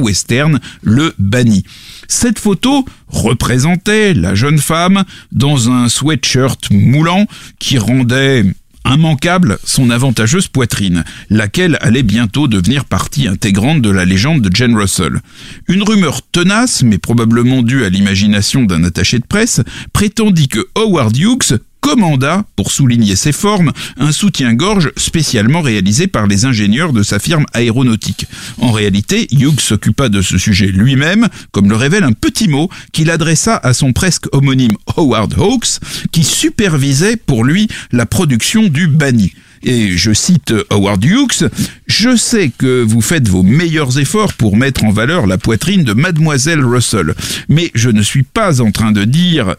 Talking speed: 150 wpm